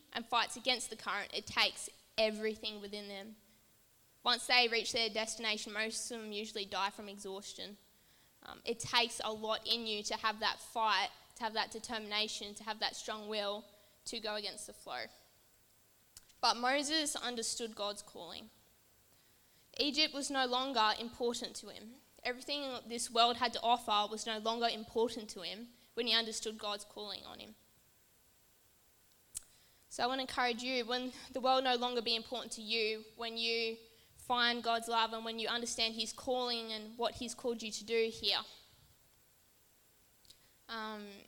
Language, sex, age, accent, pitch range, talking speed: English, female, 10-29, Australian, 215-240 Hz, 165 wpm